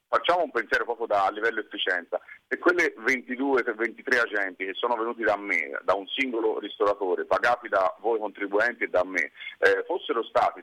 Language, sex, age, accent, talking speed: Italian, male, 40-59, native, 170 wpm